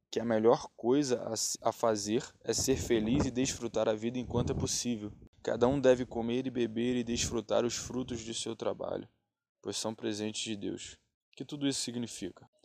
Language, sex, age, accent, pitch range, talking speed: Portuguese, male, 10-29, Brazilian, 110-120 Hz, 185 wpm